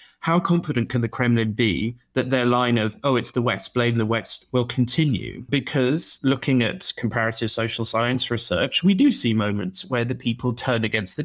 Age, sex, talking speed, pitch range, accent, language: 30-49, male, 190 wpm, 115-140 Hz, British, English